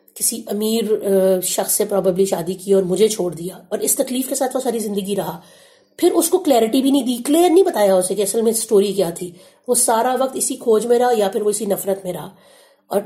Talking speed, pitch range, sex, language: 240 wpm, 195-265 Hz, female, Urdu